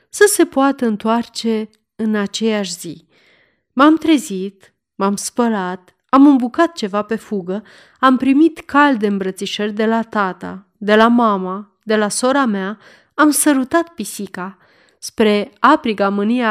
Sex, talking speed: female, 130 wpm